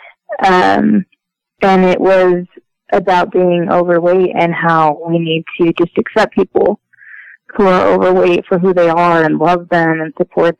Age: 30-49